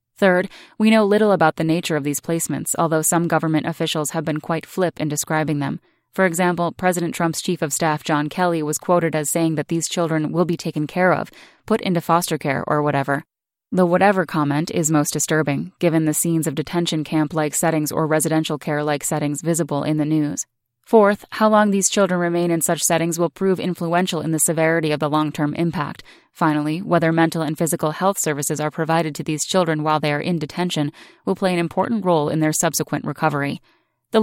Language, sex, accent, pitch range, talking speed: English, female, American, 150-175 Hz, 200 wpm